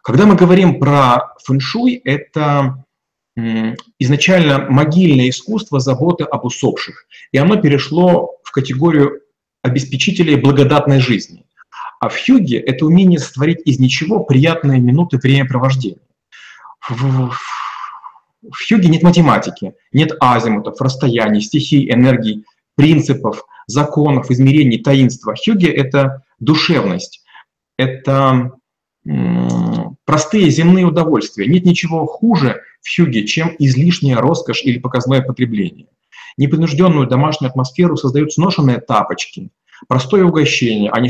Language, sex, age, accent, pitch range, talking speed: Russian, male, 30-49, native, 125-160 Hz, 110 wpm